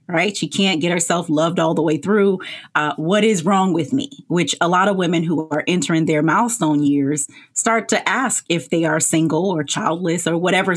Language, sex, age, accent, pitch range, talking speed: English, female, 30-49, American, 155-210 Hz, 210 wpm